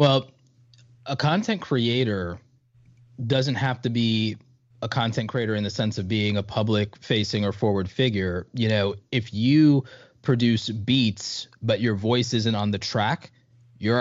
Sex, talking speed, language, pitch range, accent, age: male, 155 wpm, English, 105-130 Hz, American, 20-39